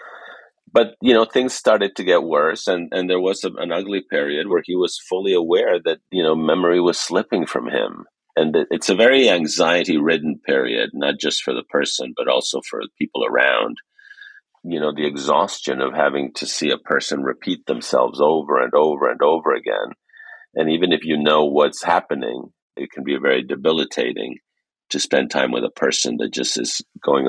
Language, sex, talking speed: English, male, 190 wpm